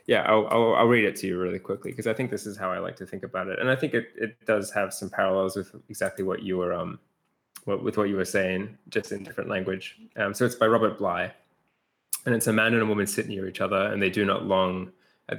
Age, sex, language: 20-39, male, English